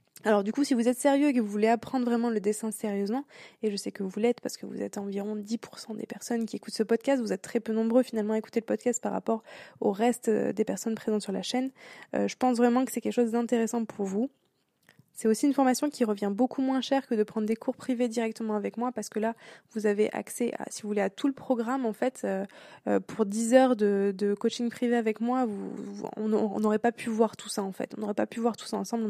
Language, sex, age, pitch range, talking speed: French, female, 20-39, 210-245 Hz, 265 wpm